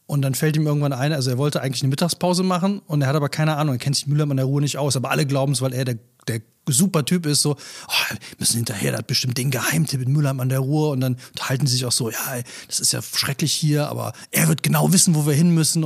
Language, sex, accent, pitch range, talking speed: German, male, German, 135-170 Hz, 290 wpm